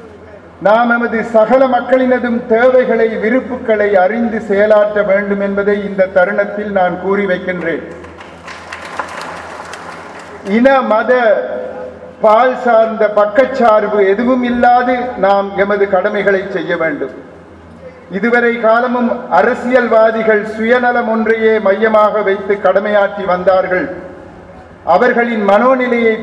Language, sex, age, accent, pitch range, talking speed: English, male, 50-69, Indian, 195-235 Hz, 80 wpm